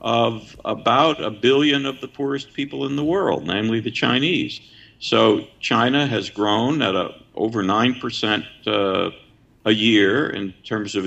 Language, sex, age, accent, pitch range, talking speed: English, male, 50-69, American, 105-135 Hz, 150 wpm